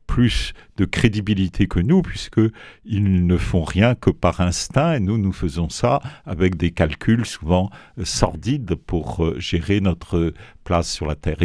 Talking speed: 170 wpm